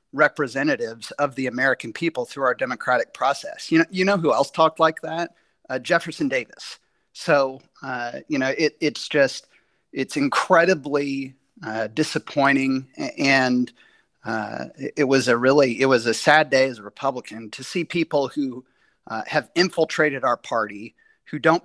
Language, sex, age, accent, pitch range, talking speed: English, male, 40-59, American, 120-150 Hz, 160 wpm